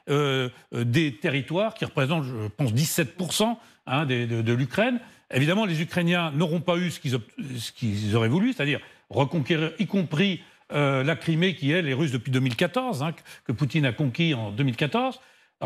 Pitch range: 145-205 Hz